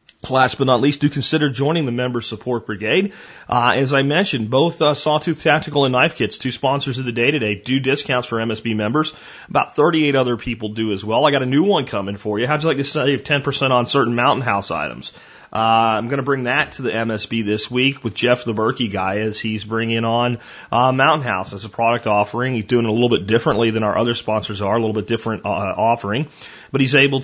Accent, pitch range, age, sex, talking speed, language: American, 115-150 Hz, 30-49, male, 240 wpm, English